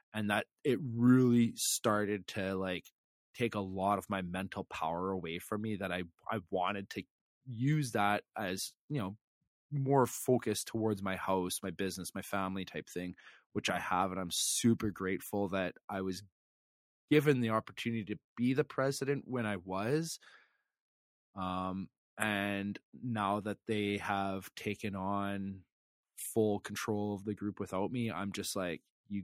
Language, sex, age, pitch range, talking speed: English, male, 20-39, 95-115 Hz, 160 wpm